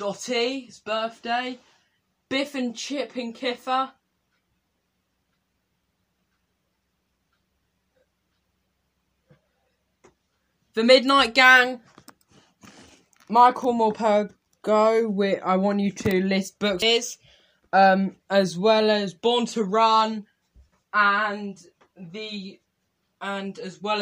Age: 10-29